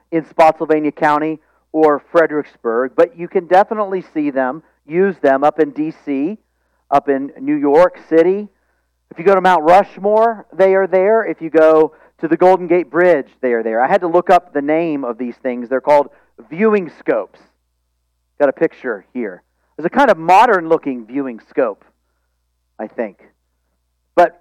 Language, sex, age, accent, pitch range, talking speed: English, male, 40-59, American, 150-200 Hz, 170 wpm